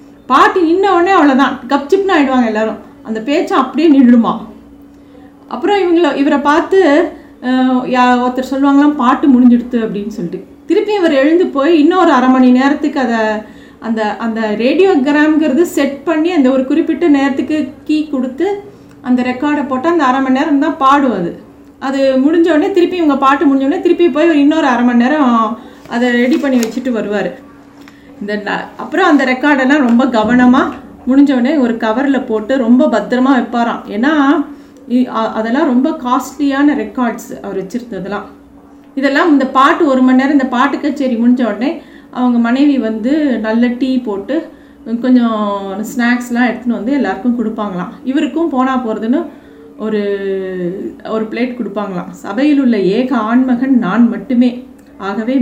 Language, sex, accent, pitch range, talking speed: Tamil, female, native, 240-290 Hz, 135 wpm